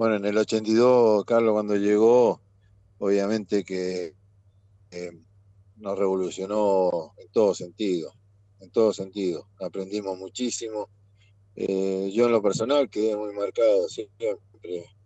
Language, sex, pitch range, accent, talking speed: Spanish, male, 100-115 Hz, Argentinian, 115 wpm